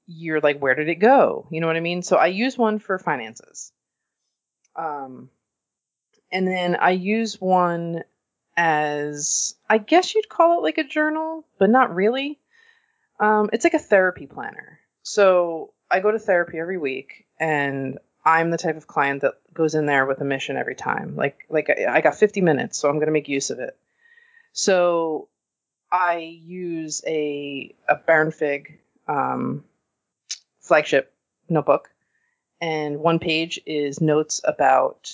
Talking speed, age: 160 wpm, 30-49